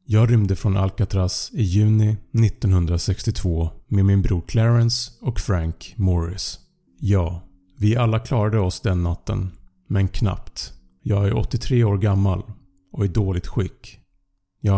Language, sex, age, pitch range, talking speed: Swedish, male, 30-49, 95-120 Hz, 135 wpm